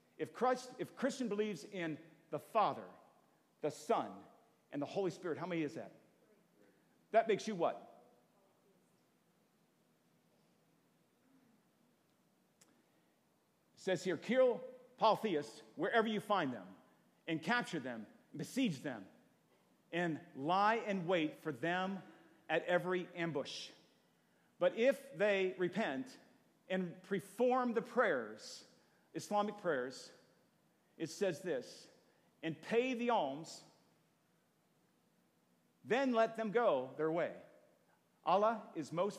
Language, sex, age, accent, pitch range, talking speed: English, male, 50-69, American, 160-225 Hz, 110 wpm